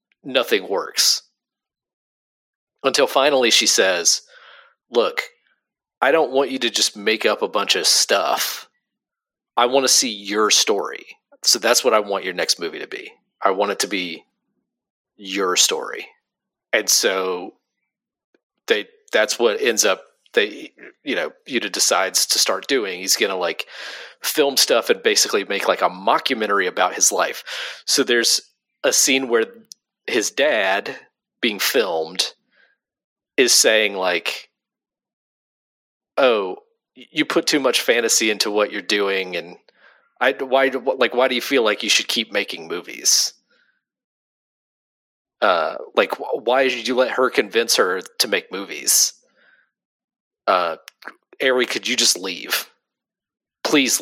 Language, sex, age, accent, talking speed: English, male, 30-49, American, 140 wpm